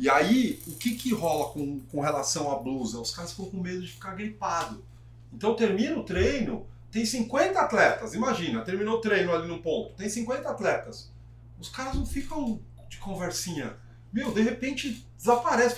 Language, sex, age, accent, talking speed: Portuguese, male, 40-59, Brazilian, 175 wpm